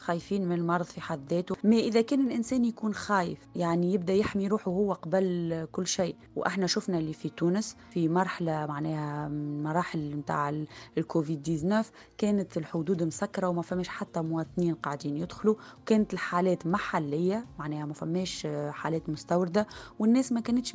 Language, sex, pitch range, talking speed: Arabic, female, 160-195 Hz, 150 wpm